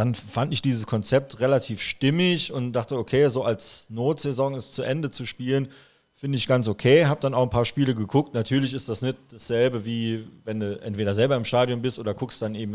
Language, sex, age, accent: German, male, 30-49, German